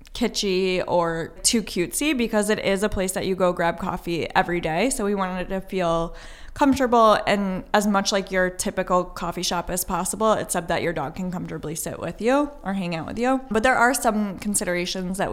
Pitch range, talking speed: 180-205 Hz, 205 wpm